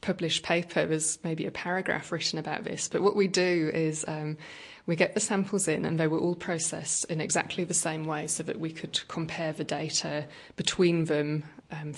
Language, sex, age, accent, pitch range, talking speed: English, female, 20-39, British, 155-175 Hz, 200 wpm